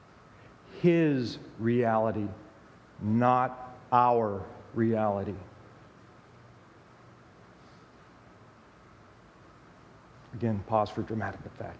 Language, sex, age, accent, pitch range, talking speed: English, male, 50-69, American, 120-170 Hz, 50 wpm